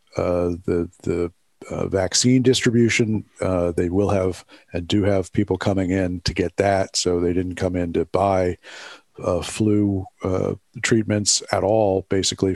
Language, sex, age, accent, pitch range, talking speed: English, male, 50-69, American, 90-105 Hz, 160 wpm